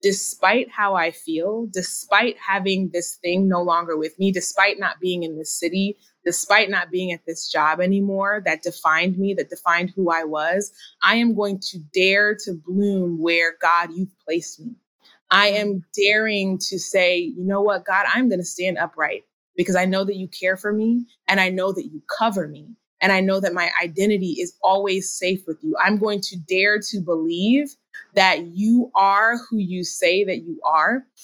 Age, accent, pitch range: 20-39, American, 175-210 Hz